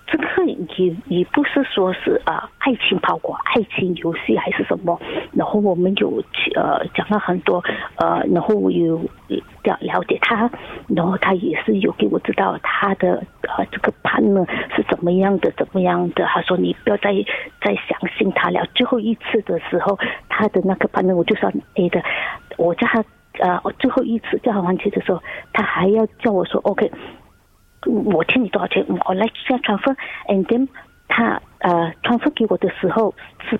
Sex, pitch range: female, 185-235 Hz